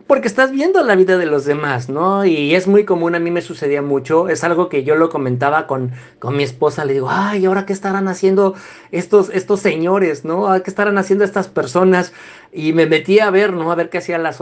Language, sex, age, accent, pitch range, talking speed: Spanish, male, 50-69, Mexican, 165-205 Hz, 235 wpm